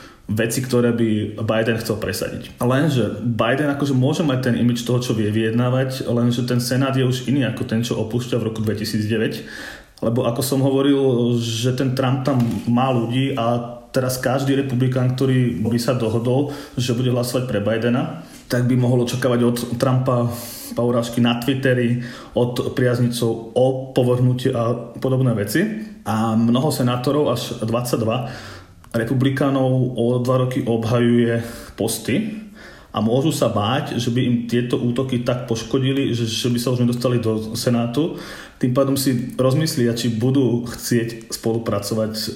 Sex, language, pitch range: male, Slovak, 115-130 Hz